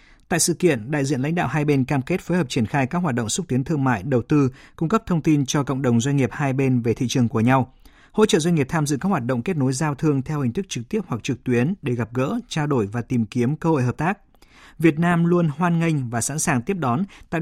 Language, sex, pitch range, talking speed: Vietnamese, male, 125-160 Hz, 290 wpm